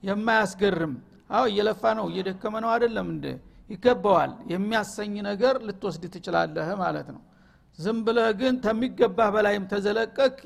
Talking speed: 125 wpm